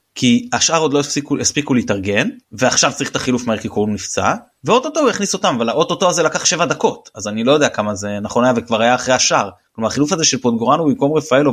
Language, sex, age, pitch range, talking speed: Hebrew, male, 20-39, 120-160 Hz, 230 wpm